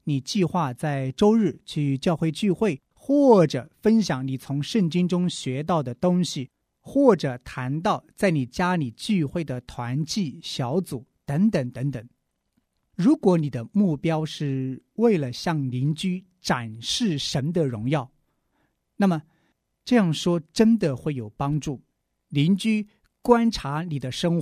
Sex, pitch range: male, 135-195 Hz